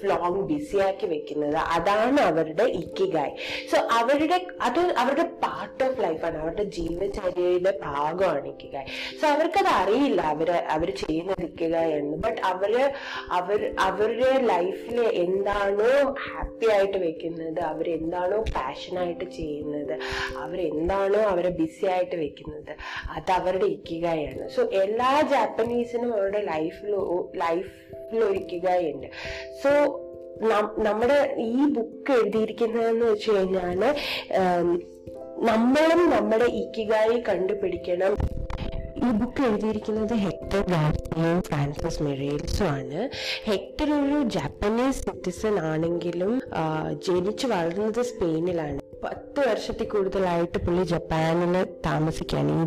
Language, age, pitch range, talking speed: Malayalam, 20-39, 170-235 Hz, 80 wpm